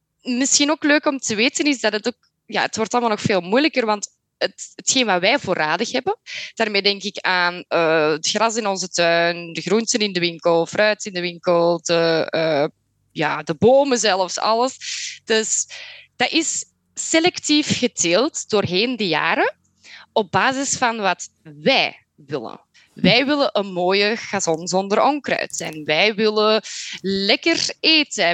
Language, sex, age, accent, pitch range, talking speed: Dutch, female, 20-39, Belgian, 180-265 Hz, 150 wpm